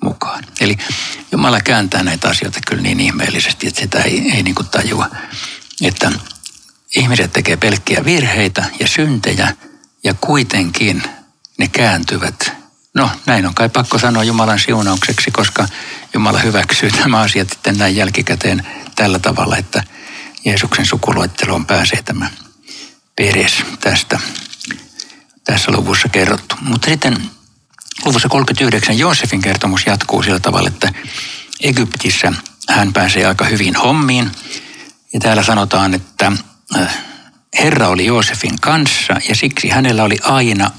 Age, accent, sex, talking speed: 60-79, native, male, 115 wpm